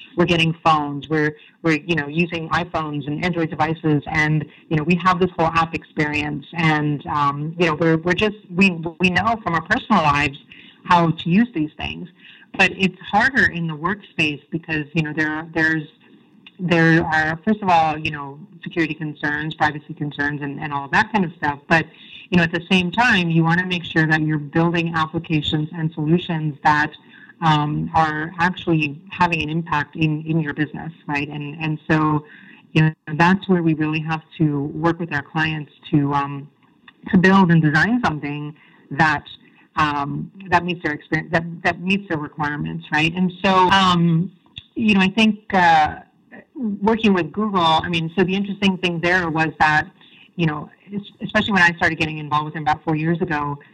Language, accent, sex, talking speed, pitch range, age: English, American, female, 190 wpm, 155-180 Hz, 30-49